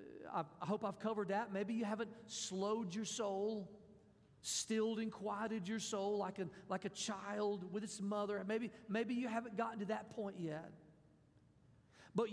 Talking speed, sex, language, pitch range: 165 wpm, male, English, 195-255 Hz